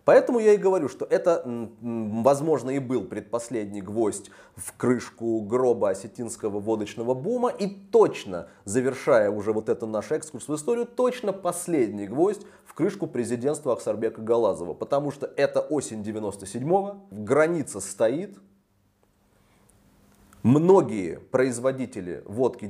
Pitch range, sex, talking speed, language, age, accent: 110-170 Hz, male, 120 wpm, Russian, 20-39, native